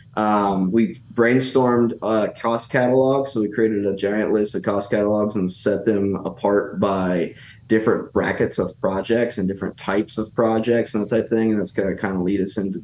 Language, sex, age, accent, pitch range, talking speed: English, male, 20-39, American, 100-115 Hz, 200 wpm